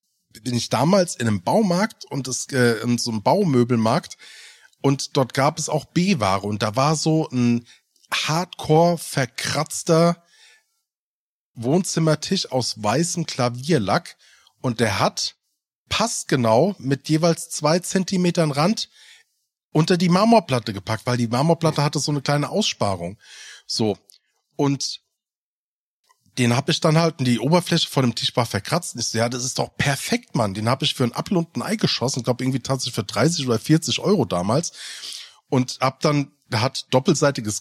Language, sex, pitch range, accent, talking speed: German, male, 120-170 Hz, German, 150 wpm